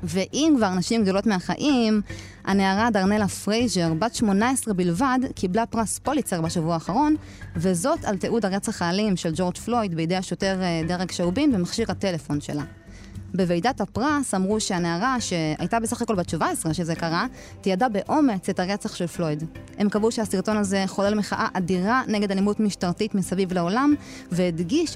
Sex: female